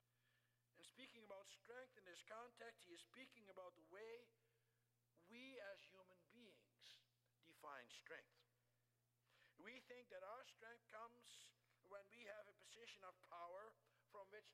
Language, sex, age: English, male, 60-79